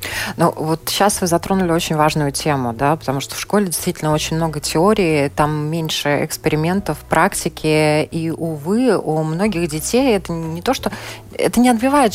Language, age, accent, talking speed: Russian, 20-39, native, 165 wpm